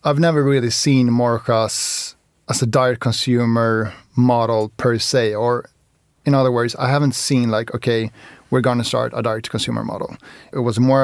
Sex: male